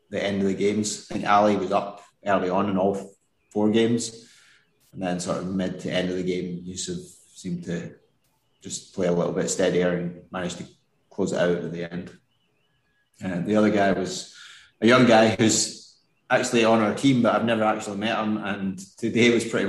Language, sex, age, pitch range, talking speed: English, male, 20-39, 95-110 Hz, 205 wpm